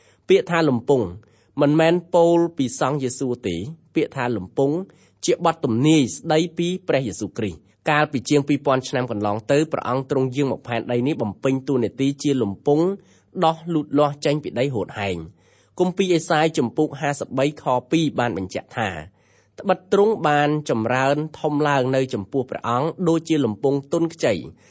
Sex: male